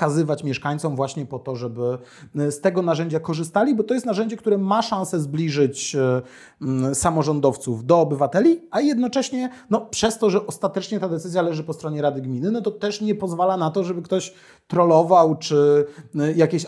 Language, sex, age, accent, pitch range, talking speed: Polish, male, 30-49, native, 135-170 Hz, 170 wpm